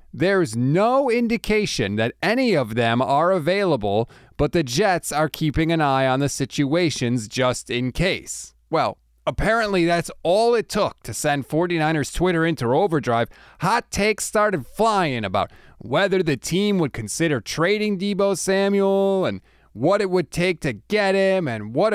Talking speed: 155 wpm